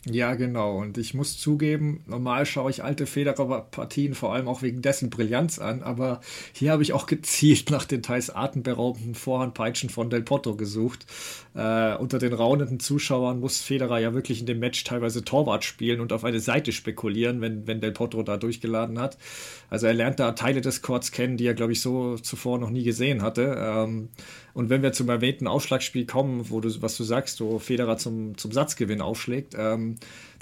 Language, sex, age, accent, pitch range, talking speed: German, male, 40-59, German, 115-135 Hz, 195 wpm